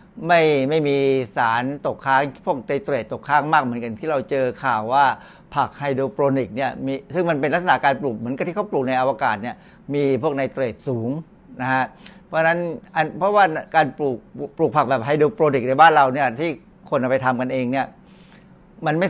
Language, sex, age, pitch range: Thai, male, 60-79, 130-175 Hz